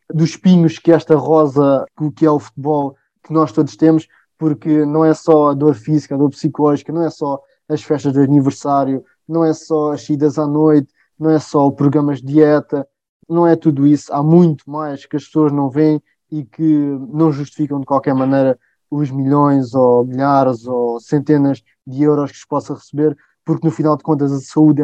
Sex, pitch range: male, 140-155 Hz